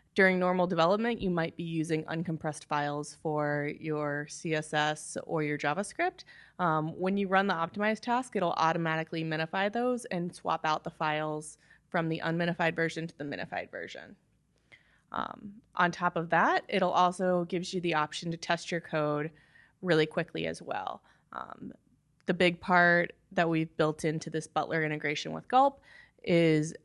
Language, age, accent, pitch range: English, 20-39, American, 160-185 Hz